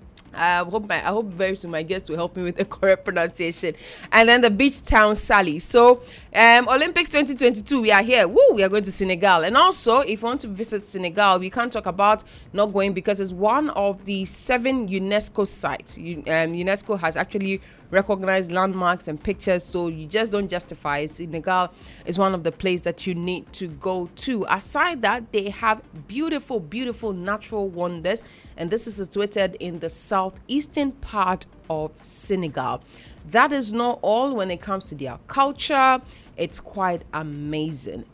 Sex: female